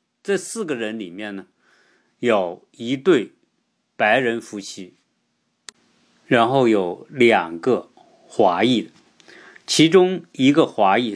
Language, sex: Chinese, male